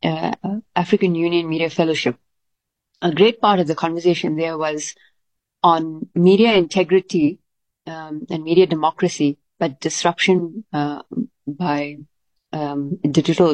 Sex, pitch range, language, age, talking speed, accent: female, 155-185 Hz, English, 30-49, 115 wpm, Indian